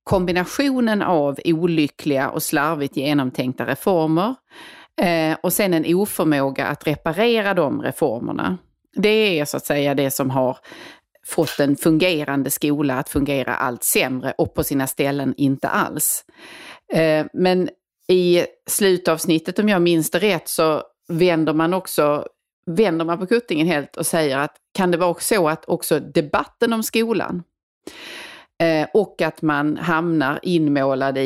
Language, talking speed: Swedish, 135 wpm